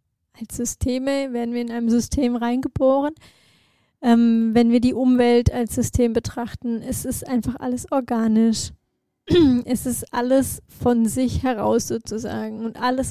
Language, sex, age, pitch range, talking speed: German, female, 20-39, 225-250 Hz, 135 wpm